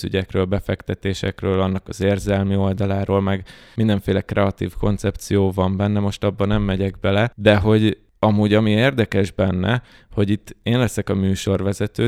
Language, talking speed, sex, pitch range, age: Hungarian, 145 wpm, male, 95-105 Hz, 20-39